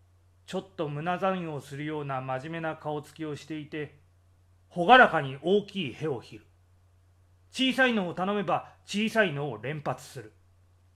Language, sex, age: Japanese, male, 30-49